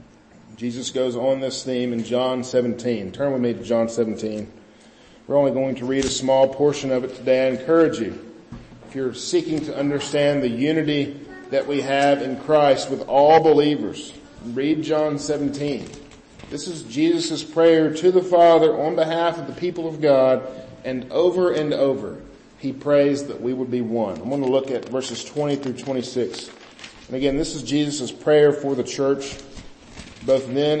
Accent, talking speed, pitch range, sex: American, 175 wpm, 135-175 Hz, male